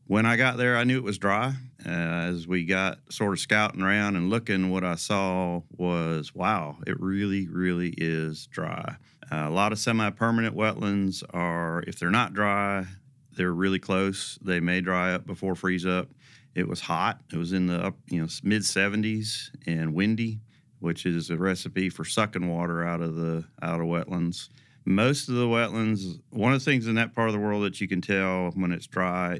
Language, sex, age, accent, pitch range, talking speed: English, male, 40-59, American, 85-105 Hz, 200 wpm